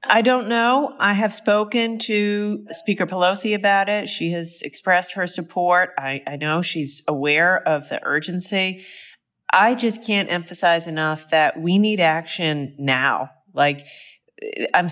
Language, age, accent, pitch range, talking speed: English, 30-49, American, 165-210 Hz, 145 wpm